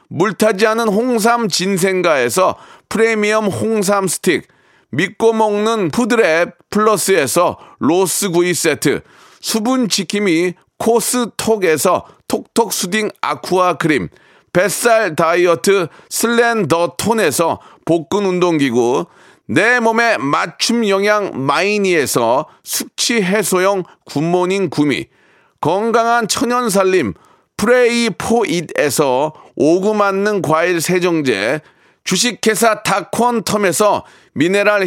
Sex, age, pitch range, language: male, 40-59, 180-230 Hz, Korean